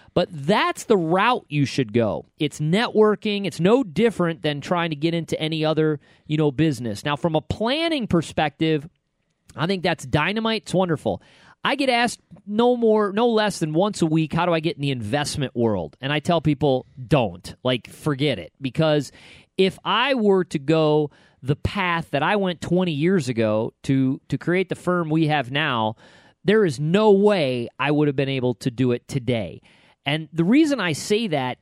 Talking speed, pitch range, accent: 190 wpm, 135-180 Hz, American